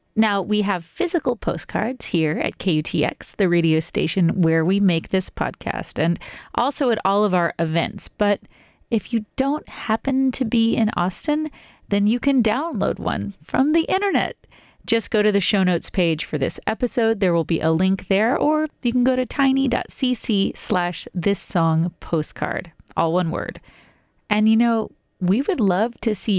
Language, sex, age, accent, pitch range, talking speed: English, female, 30-49, American, 175-230 Hz, 175 wpm